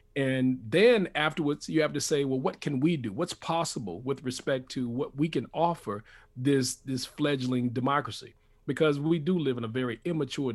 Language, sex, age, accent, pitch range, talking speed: English, male, 40-59, American, 130-160 Hz, 190 wpm